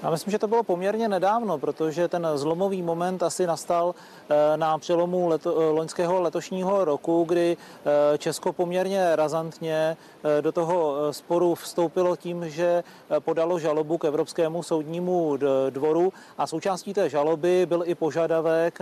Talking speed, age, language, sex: 130 wpm, 40-59, Czech, male